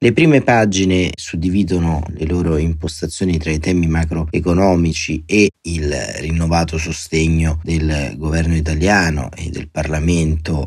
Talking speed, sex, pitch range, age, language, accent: 120 wpm, male, 80-95 Hz, 30-49, Italian, native